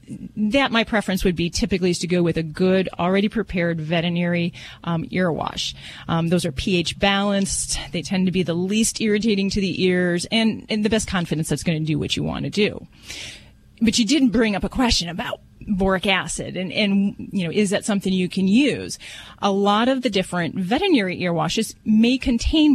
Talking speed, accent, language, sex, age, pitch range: 205 wpm, American, English, female, 30-49, 175-225 Hz